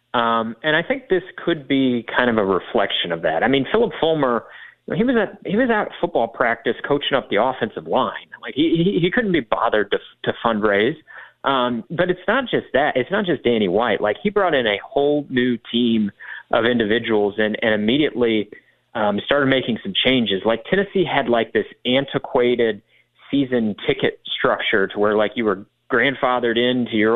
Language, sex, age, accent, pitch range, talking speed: English, male, 30-49, American, 115-160 Hz, 190 wpm